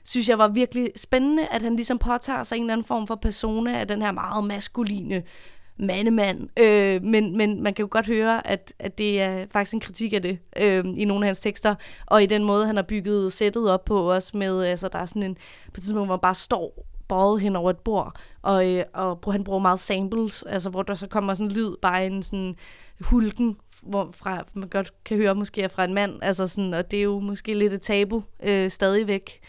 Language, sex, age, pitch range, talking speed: Danish, female, 20-39, 190-215 Hz, 225 wpm